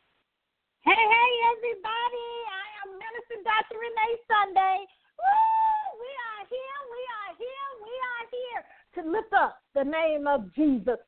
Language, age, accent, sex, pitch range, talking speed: English, 50-69, American, female, 280-435 Hz, 140 wpm